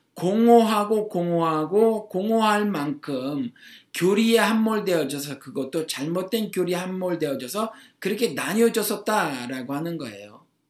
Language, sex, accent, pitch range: Korean, male, native, 155-225 Hz